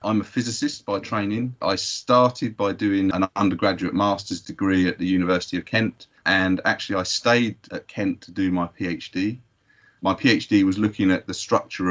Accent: British